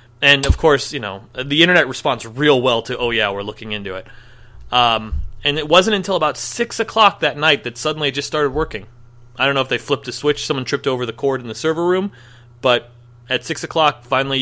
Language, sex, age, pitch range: English, male, 30-49, 120-155 Hz